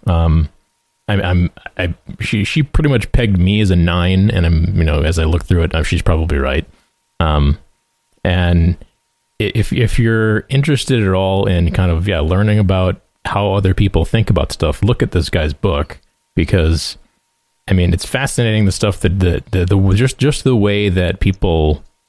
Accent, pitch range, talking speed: American, 85-105 Hz, 180 wpm